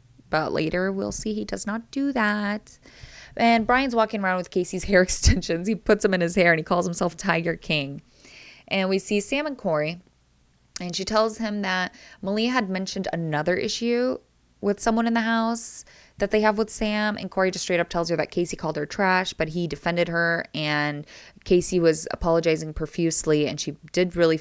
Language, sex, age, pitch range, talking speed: English, female, 20-39, 155-205 Hz, 195 wpm